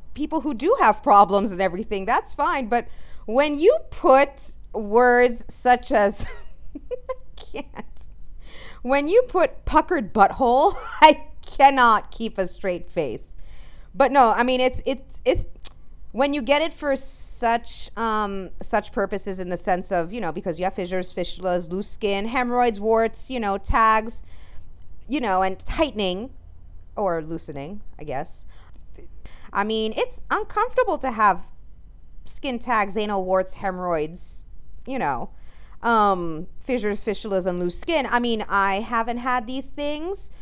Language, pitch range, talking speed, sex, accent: English, 190-265 Hz, 145 wpm, female, American